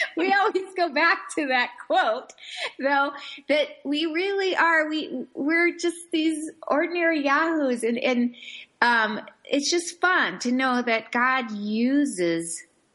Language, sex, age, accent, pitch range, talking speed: English, female, 30-49, American, 200-285 Hz, 135 wpm